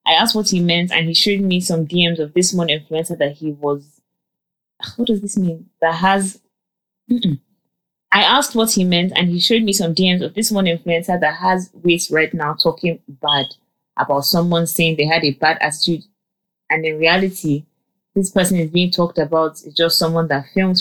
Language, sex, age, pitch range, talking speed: English, female, 20-39, 155-185 Hz, 195 wpm